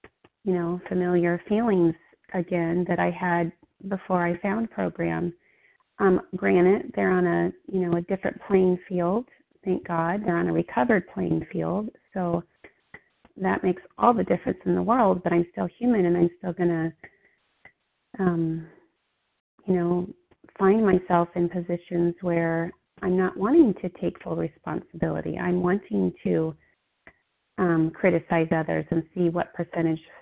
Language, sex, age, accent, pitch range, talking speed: English, female, 30-49, American, 170-185 Hz, 145 wpm